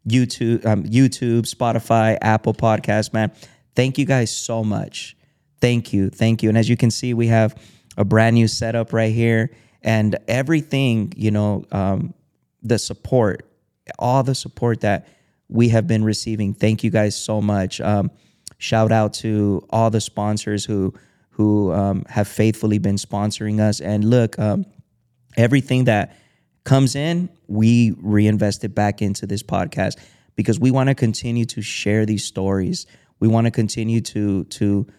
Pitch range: 105-120 Hz